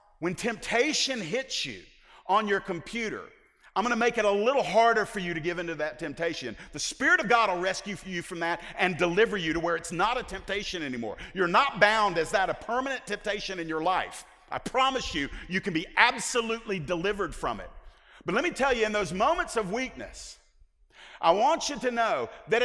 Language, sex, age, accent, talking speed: English, male, 50-69, American, 205 wpm